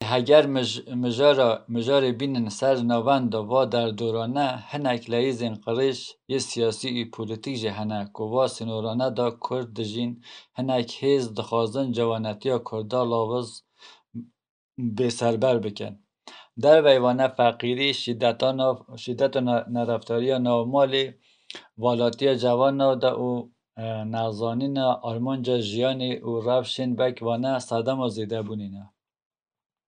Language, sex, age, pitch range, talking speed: Turkish, male, 50-69, 115-130 Hz, 115 wpm